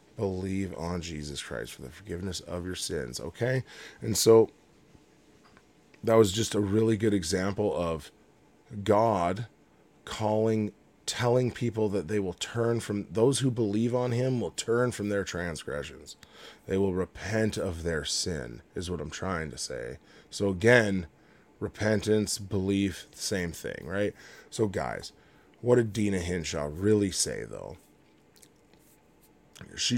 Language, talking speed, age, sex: English, 140 wpm, 20-39, male